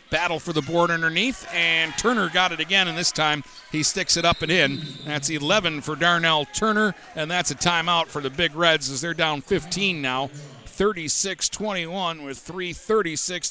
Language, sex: English, male